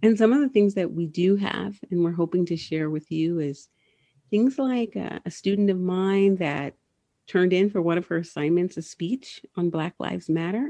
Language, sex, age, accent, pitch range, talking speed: English, female, 40-59, American, 155-185 Hz, 215 wpm